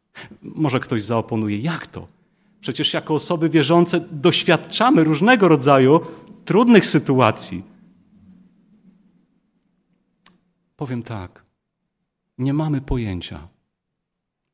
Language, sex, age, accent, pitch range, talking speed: Polish, male, 40-59, native, 110-175 Hz, 80 wpm